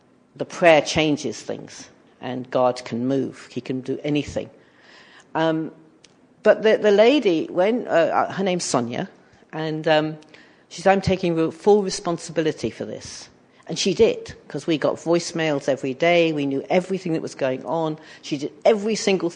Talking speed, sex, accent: 160 wpm, female, British